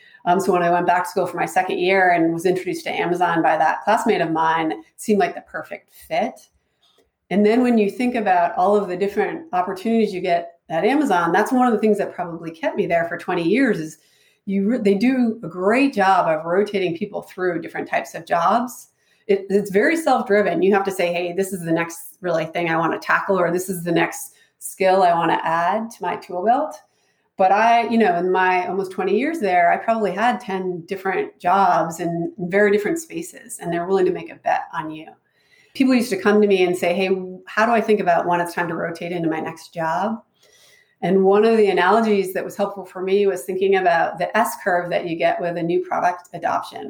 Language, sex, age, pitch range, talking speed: English, female, 30-49, 175-215 Hz, 230 wpm